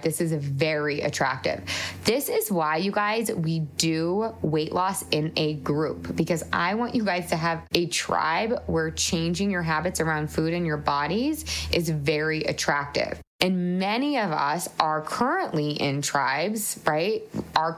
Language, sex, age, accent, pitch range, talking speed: English, female, 20-39, American, 160-205 Hz, 160 wpm